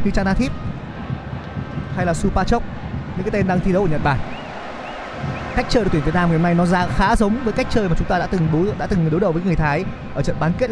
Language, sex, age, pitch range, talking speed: Vietnamese, male, 20-39, 160-205 Hz, 260 wpm